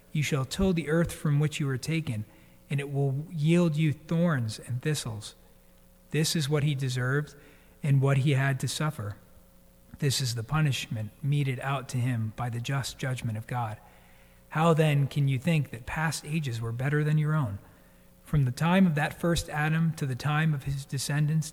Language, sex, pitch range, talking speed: English, male, 120-150 Hz, 190 wpm